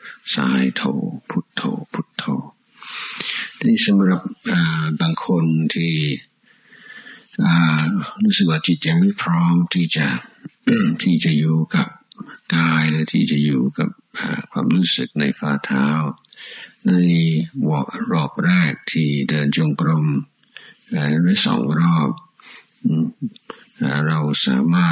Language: Thai